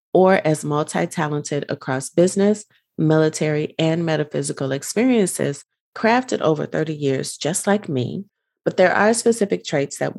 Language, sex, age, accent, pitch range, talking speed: English, female, 30-49, American, 140-180 Hz, 130 wpm